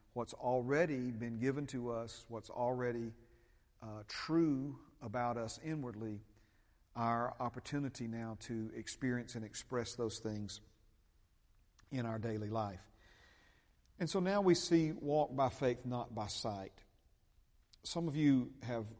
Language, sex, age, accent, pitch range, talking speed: English, male, 50-69, American, 110-125 Hz, 130 wpm